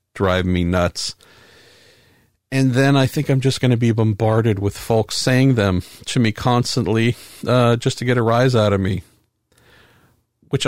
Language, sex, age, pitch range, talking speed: English, male, 50-69, 105-135 Hz, 170 wpm